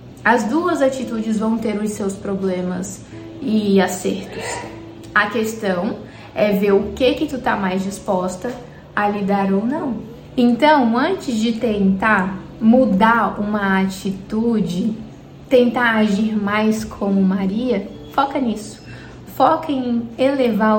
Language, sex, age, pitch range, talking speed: Portuguese, female, 20-39, 195-230 Hz, 120 wpm